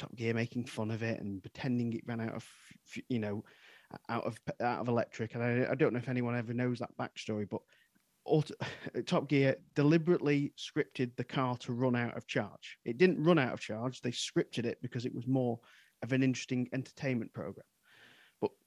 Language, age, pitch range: English, 30-49, 115-135 Hz